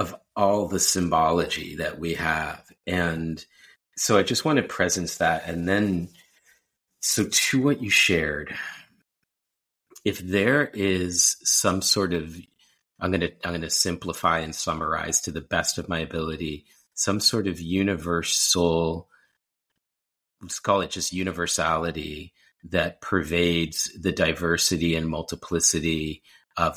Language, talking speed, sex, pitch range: English, 130 wpm, male, 80-90 Hz